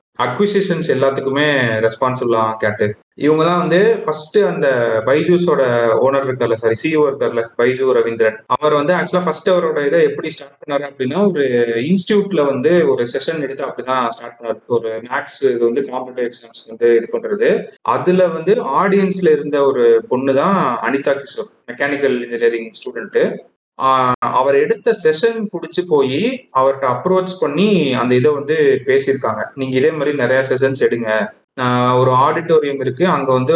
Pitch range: 120-175 Hz